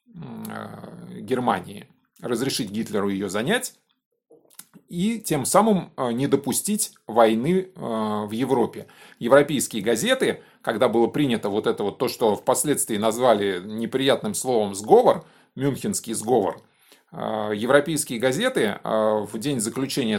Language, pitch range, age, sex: Russian, 110-160 Hz, 20-39, male